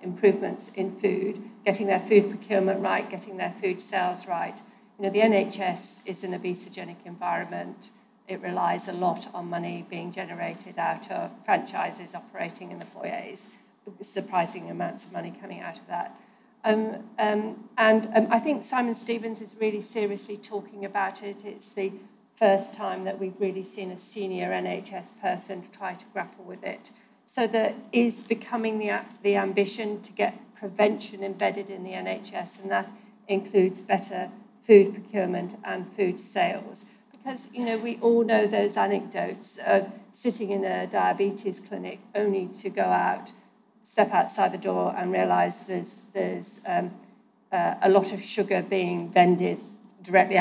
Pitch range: 190-220 Hz